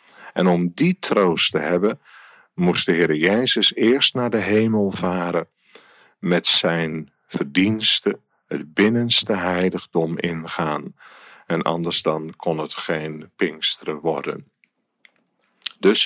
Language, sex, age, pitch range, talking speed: Dutch, male, 50-69, 80-100 Hz, 115 wpm